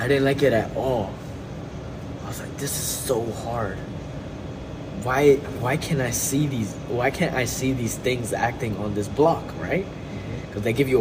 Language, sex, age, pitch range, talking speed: English, male, 20-39, 115-145 Hz, 185 wpm